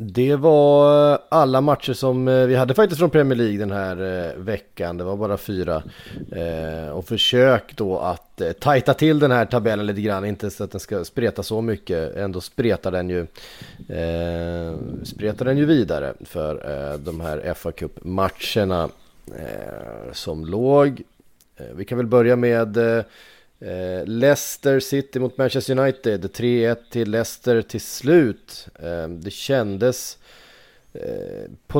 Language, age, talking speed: Swedish, 30-49, 155 wpm